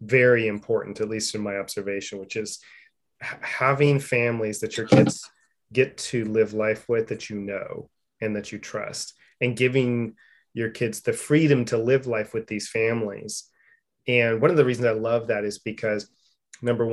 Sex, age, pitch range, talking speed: male, 30-49, 110-130 Hz, 175 wpm